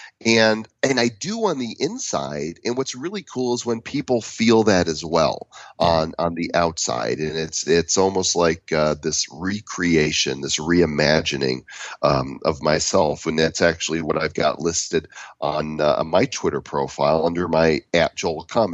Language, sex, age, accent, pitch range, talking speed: English, male, 40-59, American, 75-95 Hz, 165 wpm